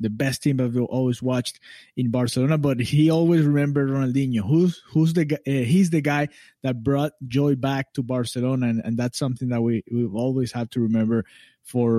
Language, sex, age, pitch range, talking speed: English, male, 20-39, 115-145 Hz, 190 wpm